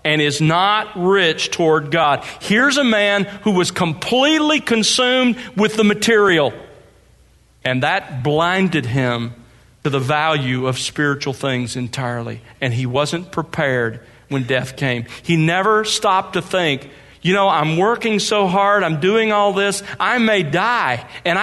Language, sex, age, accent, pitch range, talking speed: English, male, 40-59, American, 135-185 Hz, 150 wpm